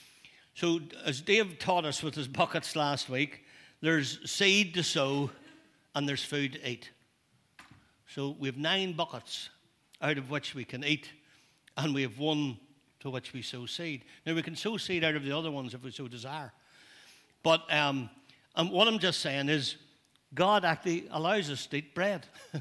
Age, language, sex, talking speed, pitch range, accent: 60-79, English, male, 180 wpm, 130-165 Hz, Irish